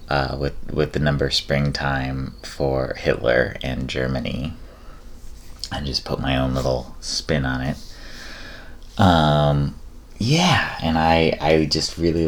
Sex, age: male, 30-49